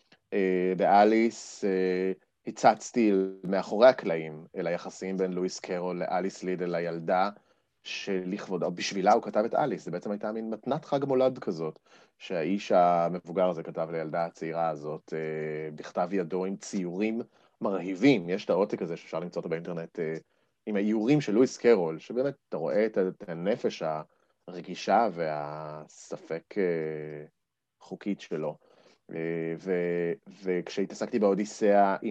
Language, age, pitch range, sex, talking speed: Hebrew, 30-49, 85-110 Hz, male, 130 wpm